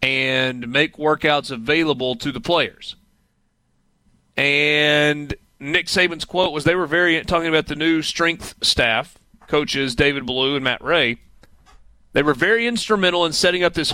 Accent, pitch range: American, 140-165 Hz